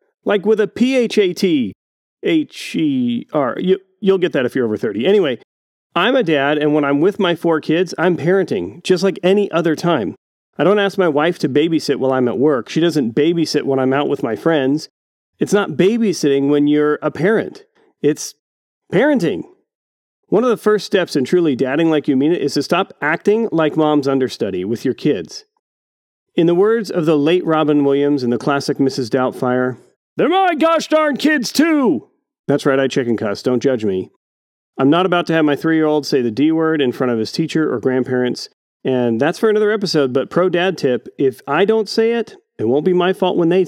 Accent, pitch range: American, 140-200 Hz